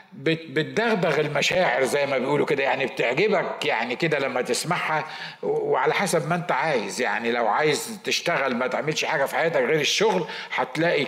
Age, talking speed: 50-69, 155 wpm